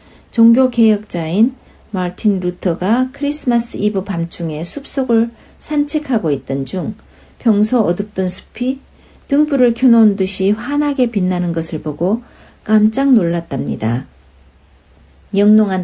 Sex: female